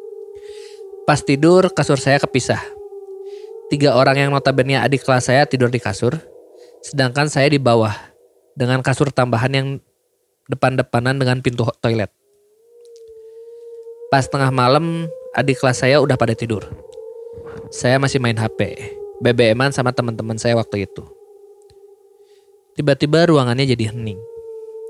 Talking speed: 120 wpm